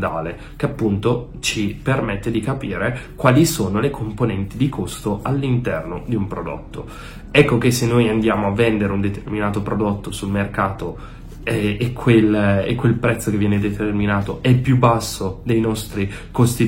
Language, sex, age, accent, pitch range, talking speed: Italian, male, 20-39, native, 100-120 Hz, 145 wpm